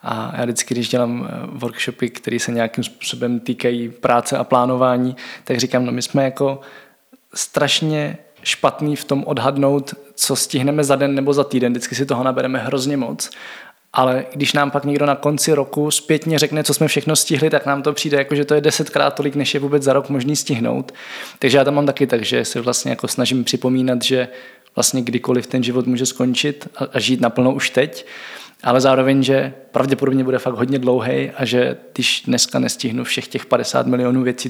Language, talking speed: Czech, 190 wpm